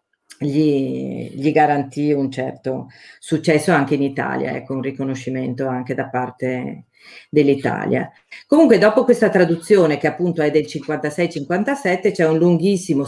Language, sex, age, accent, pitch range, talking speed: Italian, female, 40-59, native, 140-165 Hz, 130 wpm